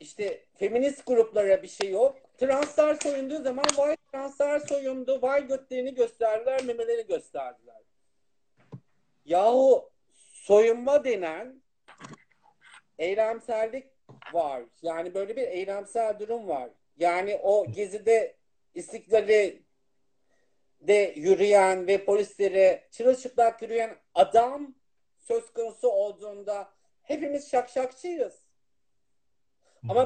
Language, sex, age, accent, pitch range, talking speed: Turkish, male, 50-69, native, 180-275 Hz, 90 wpm